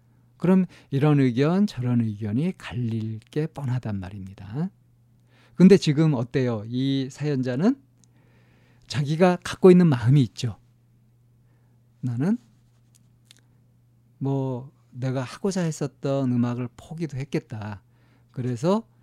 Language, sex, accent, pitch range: Korean, male, native, 120-145 Hz